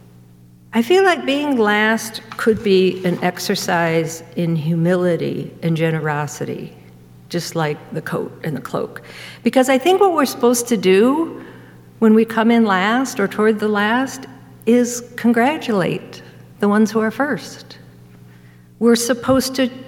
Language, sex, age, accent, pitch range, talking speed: English, female, 50-69, American, 135-220 Hz, 140 wpm